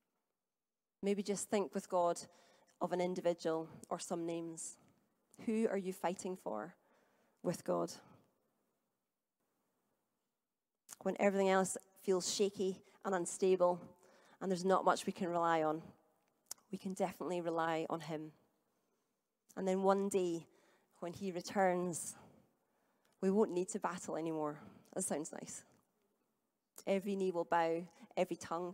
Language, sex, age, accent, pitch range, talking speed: English, female, 30-49, British, 170-195 Hz, 125 wpm